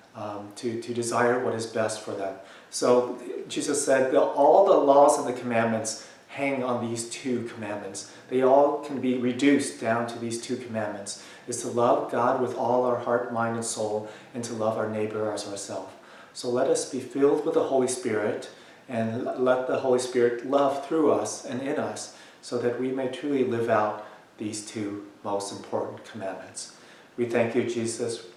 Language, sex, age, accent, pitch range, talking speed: English, male, 40-59, American, 105-125 Hz, 185 wpm